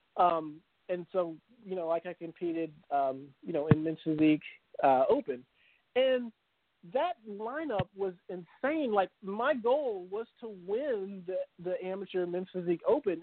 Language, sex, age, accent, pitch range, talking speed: English, male, 40-59, American, 170-225 Hz, 150 wpm